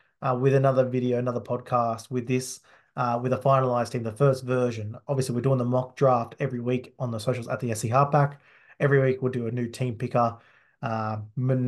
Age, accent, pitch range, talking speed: 20-39, Australian, 120-135 Hz, 205 wpm